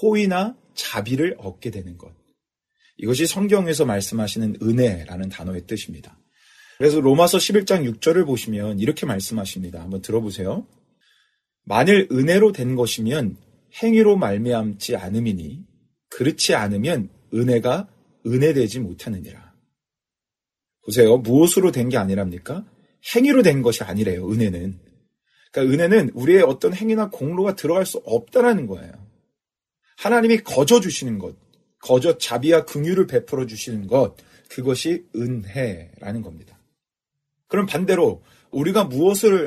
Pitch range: 105-180 Hz